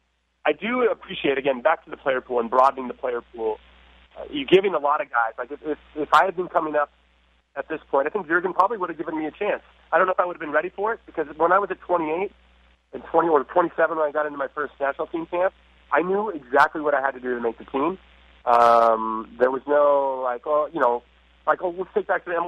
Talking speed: 270 wpm